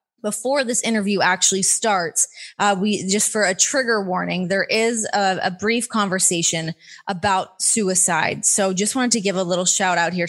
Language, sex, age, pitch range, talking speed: English, female, 20-39, 185-225 Hz, 175 wpm